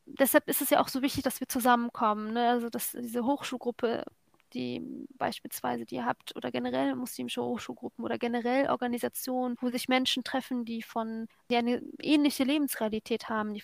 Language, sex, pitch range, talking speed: German, female, 230-270 Hz, 170 wpm